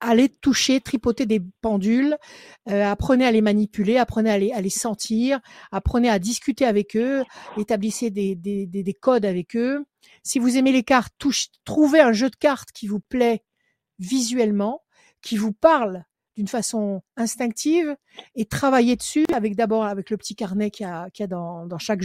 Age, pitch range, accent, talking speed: 50-69, 215-280 Hz, French, 185 wpm